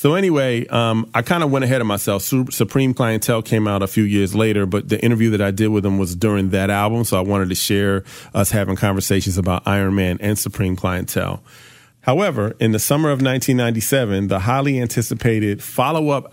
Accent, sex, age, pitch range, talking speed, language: American, male, 40-59, 100-130 Hz, 200 wpm, English